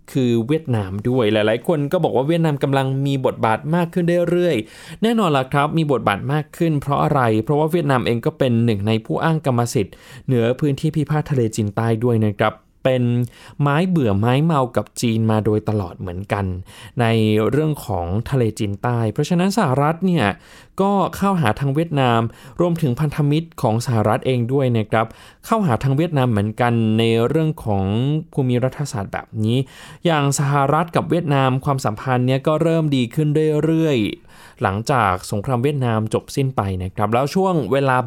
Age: 20-39